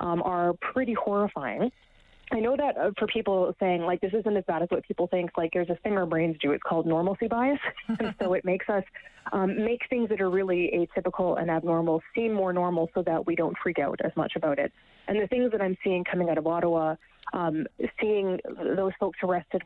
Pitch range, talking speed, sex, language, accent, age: 170-210 Hz, 225 wpm, female, English, American, 20-39